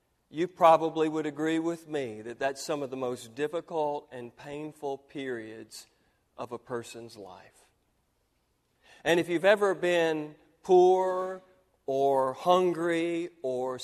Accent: American